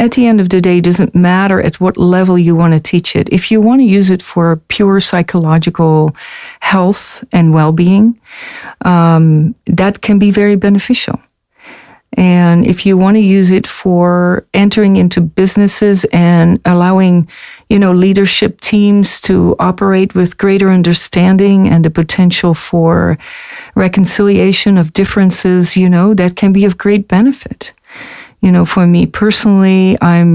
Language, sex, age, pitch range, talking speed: English, female, 50-69, 170-200 Hz, 155 wpm